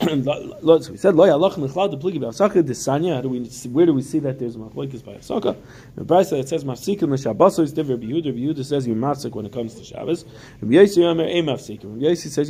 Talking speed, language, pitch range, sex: 120 wpm, English, 120-160 Hz, male